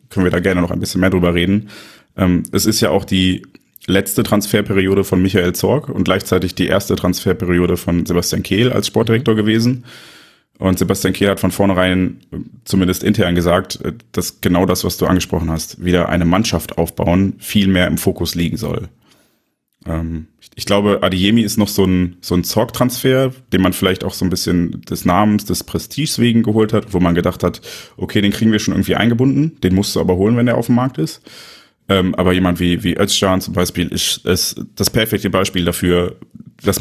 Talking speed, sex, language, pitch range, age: 190 wpm, male, German, 90-105 Hz, 30-49